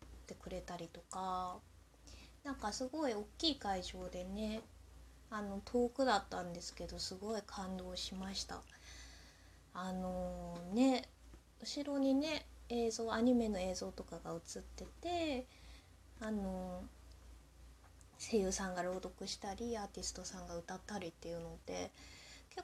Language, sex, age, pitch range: Japanese, female, 20-39, 165-245 Hz